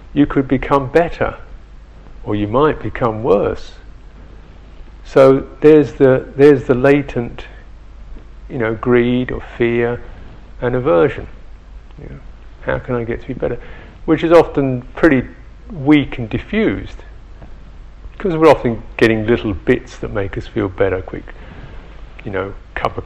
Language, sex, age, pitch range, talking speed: English, male, 50-69, 100-135 Hz, 140 wpm